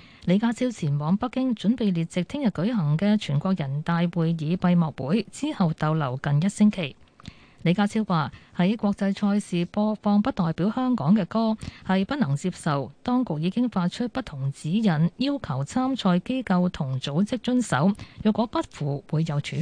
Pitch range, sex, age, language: 170-235 Hz, female, 20-39, Chinese